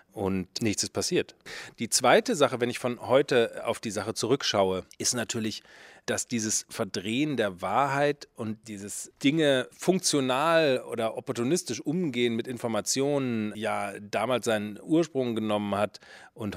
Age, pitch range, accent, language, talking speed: 40-59, 105-140 Hz, German, German, 140 wpm